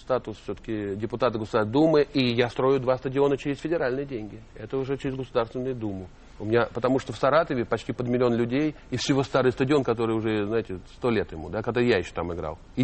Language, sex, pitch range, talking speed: Russian, male, 110-140 Hz, 210 wpm